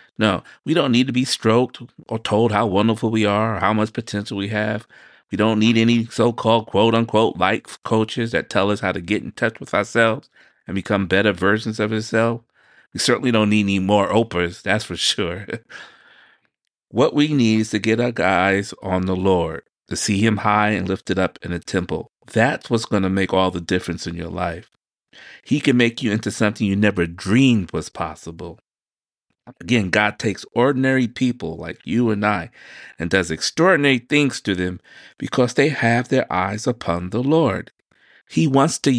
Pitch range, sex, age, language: 95-115 Hz, male, 30-49, English